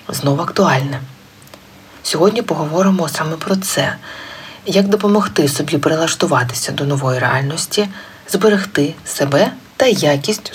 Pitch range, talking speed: 140-195 Hz, 100 wpm